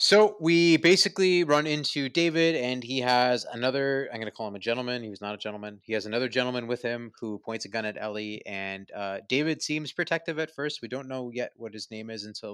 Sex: male